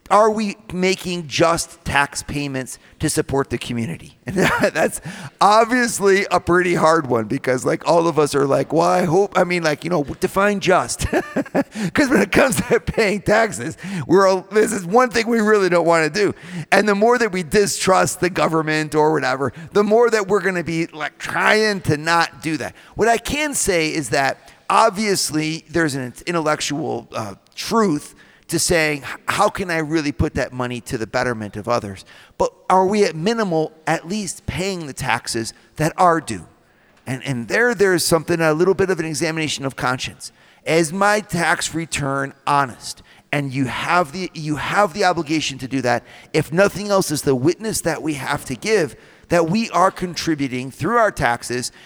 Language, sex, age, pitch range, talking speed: English, male, 40-59, 140-190 Hz, 185 wpm